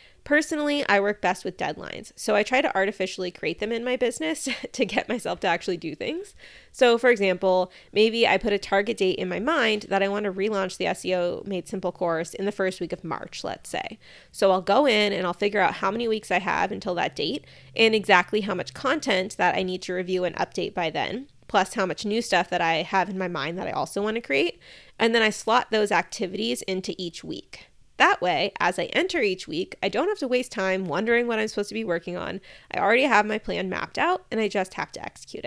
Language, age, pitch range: English, 20-39, 185-235 Hz